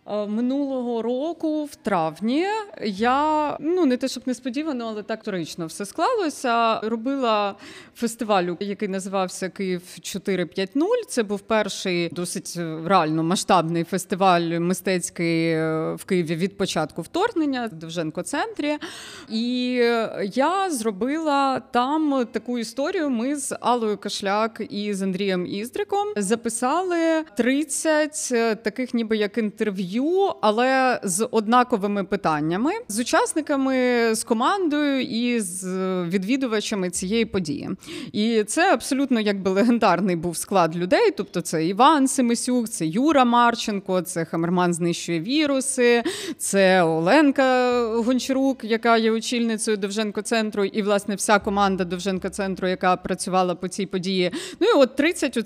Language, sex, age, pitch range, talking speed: Ukrainian, female, 30-49, 190-265 Hz, 120 wpm